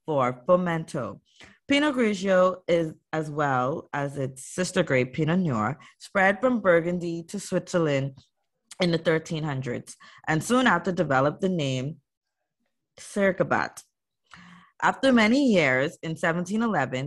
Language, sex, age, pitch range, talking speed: English, female, 20-39, 140-185 Hz, 115 wpm